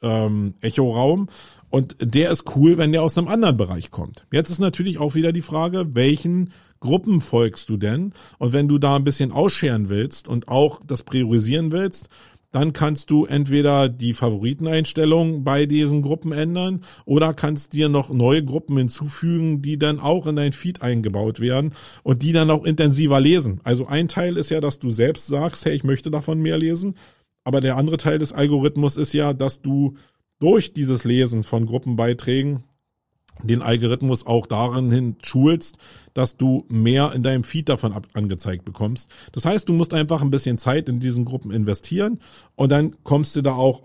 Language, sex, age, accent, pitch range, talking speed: German, male, 40-59, German, 120-160 Hz, 180 wpm